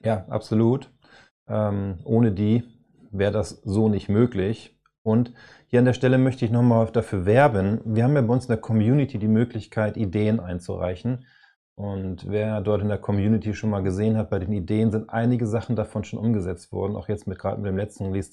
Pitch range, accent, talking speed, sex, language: 100-120 Hz, German, 195 wpm, male, German